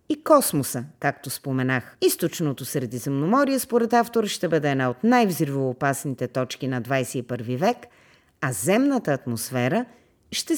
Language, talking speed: Bulgarian, 120 wpm